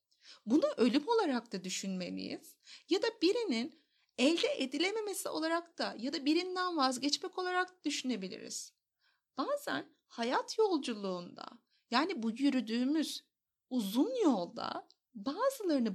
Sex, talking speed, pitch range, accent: female, 100 wpm, 240-340 Hz, native